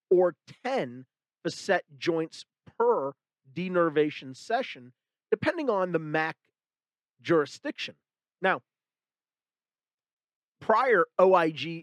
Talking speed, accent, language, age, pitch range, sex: 75 wpm, American, English, 40-59, 150-220 Hz, male